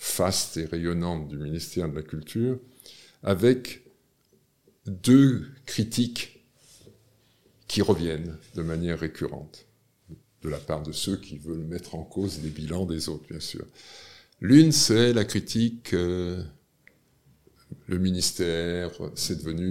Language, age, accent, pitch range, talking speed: French, 50-69, French, 80-115 Hz, 125 wpm